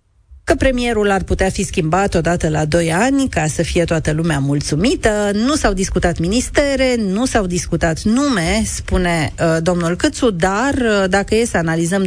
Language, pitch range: Romanian, 170-220 Hz